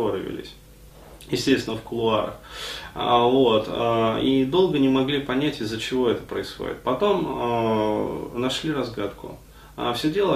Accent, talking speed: native, 100 wpm